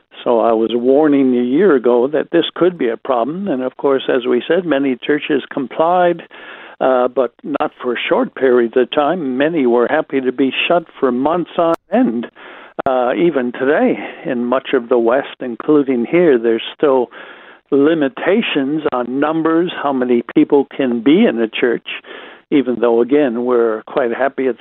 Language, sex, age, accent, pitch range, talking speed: English, male, 60-79, American, 125-160 Hz, 175 wpm